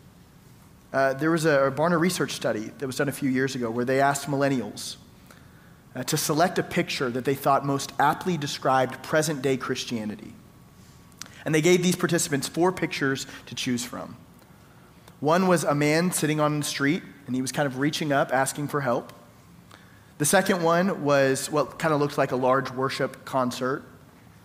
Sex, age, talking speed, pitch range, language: male, 30-49, 185 wpm, 130-160 Hz, English